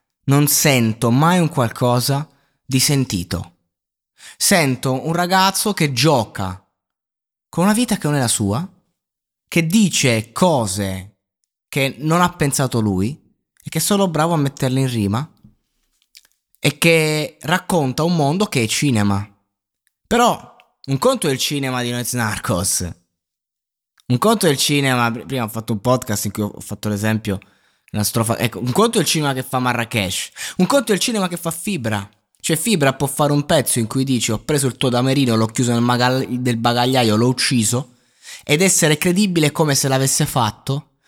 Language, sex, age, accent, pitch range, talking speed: Italian, male, 20-39, native, 110-165 Hz, 170 wpm